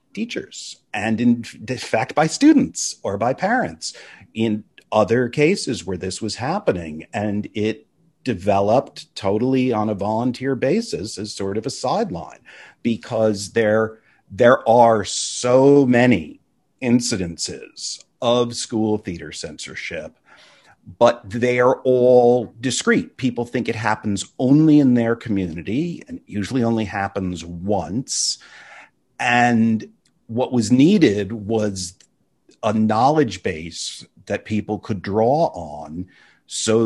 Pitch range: 105-125 Hz